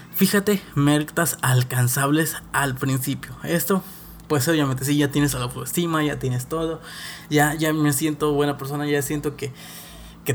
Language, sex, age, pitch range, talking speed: Spanish, male, 20-39, 140-165 Hz, 155 wpm